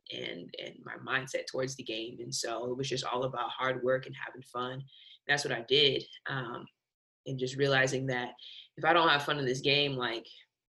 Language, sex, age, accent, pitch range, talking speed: English, female, 20-39, American, 125-135 Hz, 210 wpm